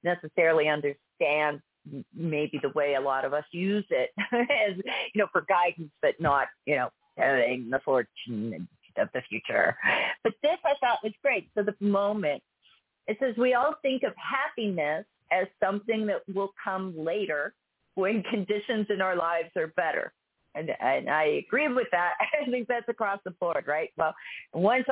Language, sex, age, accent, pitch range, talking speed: English, female, 40-59, American, 160-225 Hz, 170 wpm